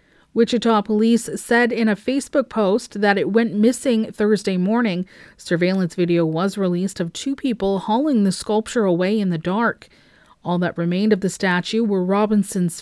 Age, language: 30-49, English